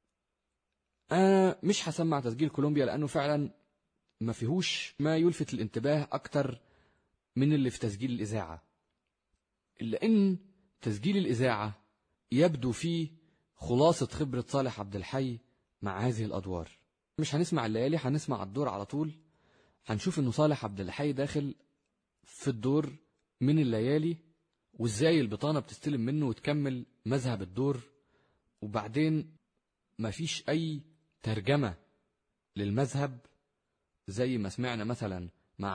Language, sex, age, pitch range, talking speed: Arabic, male, 30-49, 110-150 Hz, 110 wpm